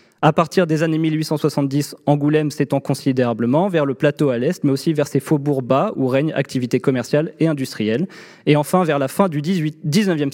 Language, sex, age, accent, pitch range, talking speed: French, male, 20-39, French, 135-165 Hz, 190 wpm